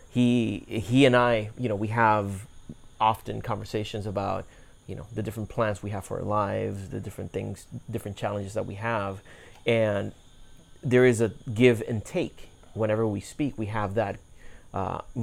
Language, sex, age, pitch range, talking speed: English, male, 30-49, 100-115 Hz, 170 wpm